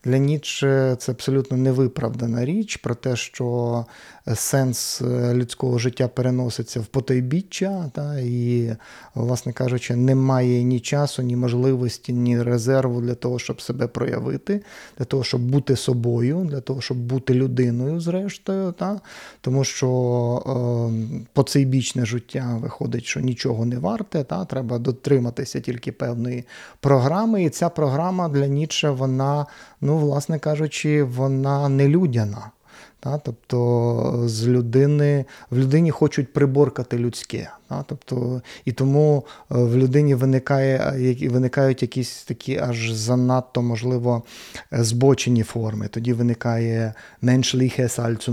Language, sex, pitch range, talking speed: Ukrainian, male, 120-145 Hz, 120 wpm